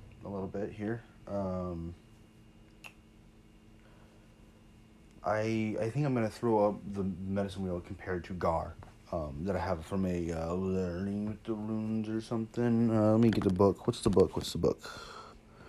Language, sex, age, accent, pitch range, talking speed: English, male, 30-49, American, 100-115 Hz, 170 wpm